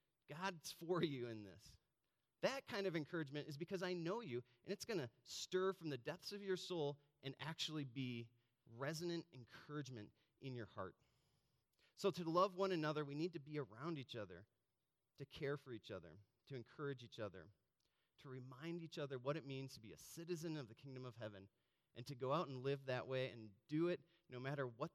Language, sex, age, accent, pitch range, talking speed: English, male, 30-49, American, 120-165 Hz, 200 wpm